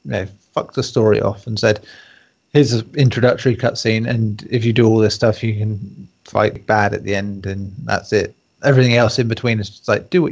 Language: English